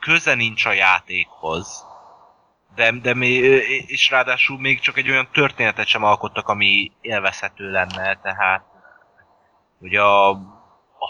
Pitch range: 105-135 Hz